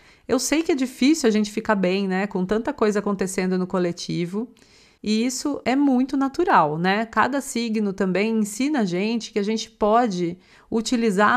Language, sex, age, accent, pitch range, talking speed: Portuguese, female, 30-49, Brazilian, 200-245 Hz, 175 wpm